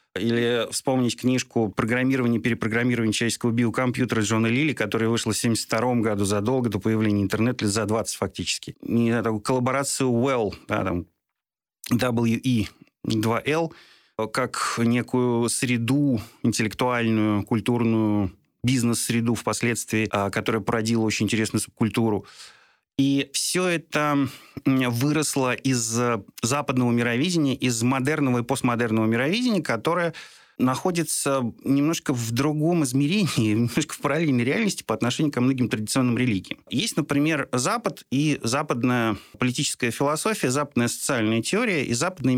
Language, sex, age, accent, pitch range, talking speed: Russian, male, 30-49, native, 115-140 Hz, 120 wpm